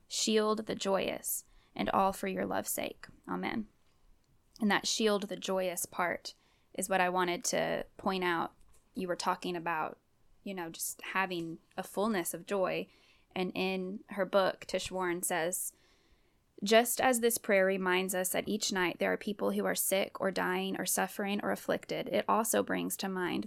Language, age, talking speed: English, 10-29, 175 wpm